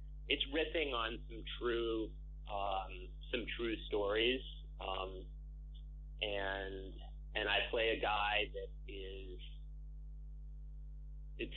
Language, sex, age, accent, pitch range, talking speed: English, male, 30-49, American, 75-115 Hz, 100 wpm